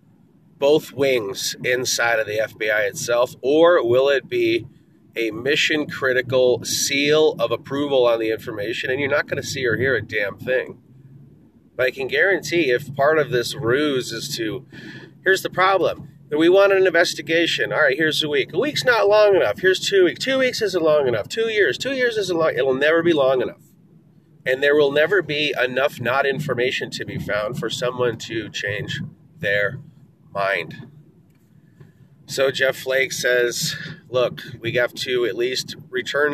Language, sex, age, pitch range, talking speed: English, male, 30-49, 120-160 Hz, 175 wpm